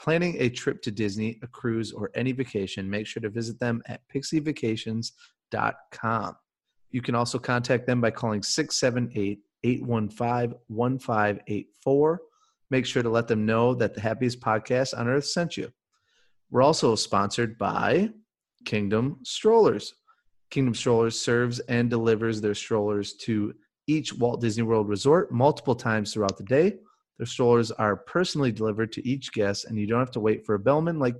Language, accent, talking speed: English, American, 155 wpm